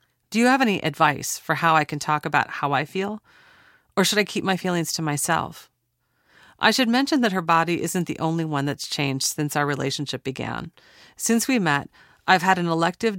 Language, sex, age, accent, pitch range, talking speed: English, female, 40-59, American, 145-185 Hz, 205 wpm